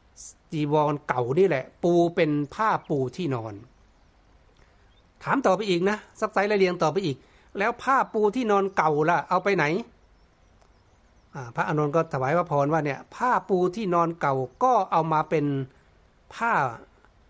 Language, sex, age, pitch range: Thai, male, 60-79, 135-195 Hz